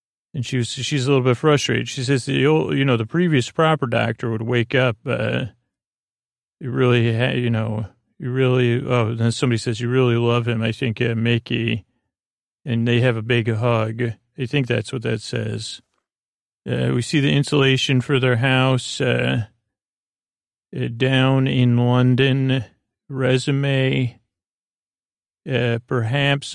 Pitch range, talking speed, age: 115-130 Hz, 145 wpm, 40-59